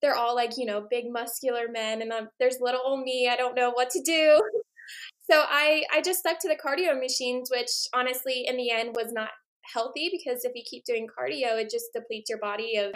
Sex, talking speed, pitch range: female, 220 wpm, 225-285 Hz